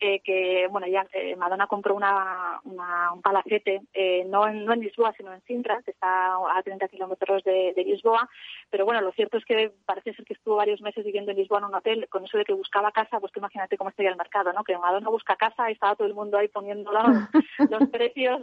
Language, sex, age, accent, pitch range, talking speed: Spanish, female, 20-39, Spanish, 195-225 Hz, 240 wpm